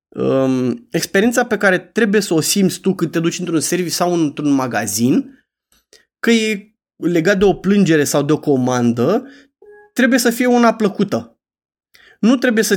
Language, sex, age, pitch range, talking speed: Romanian, male, 20-39, 150-200 Hz, 165 wpm